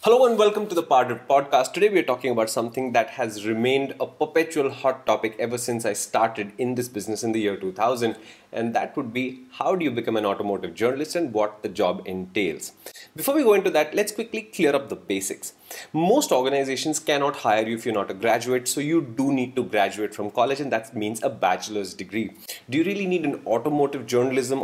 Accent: Indian